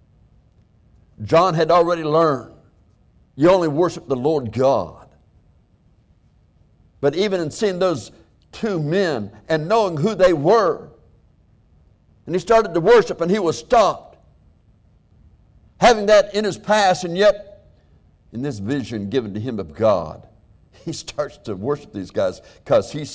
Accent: American